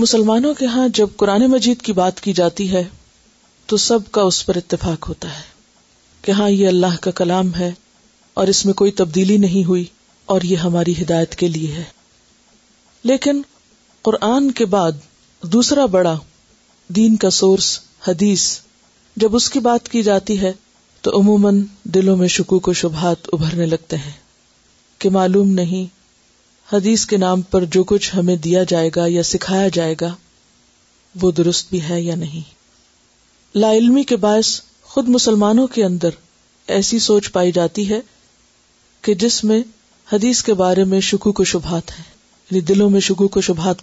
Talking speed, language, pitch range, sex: 165 wpm, Urdu, 180-215 Hz, female